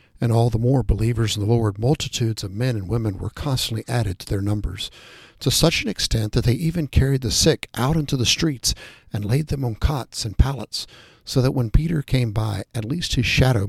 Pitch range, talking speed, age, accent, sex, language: 105-130 Hz, 220 wpm, 60-79, American, male, English